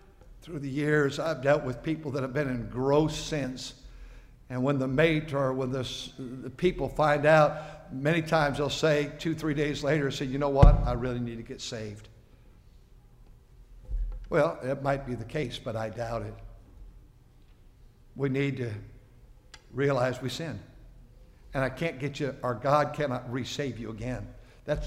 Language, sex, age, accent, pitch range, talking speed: English, male, 60-79, American, 115-135 Hz, 165 wpm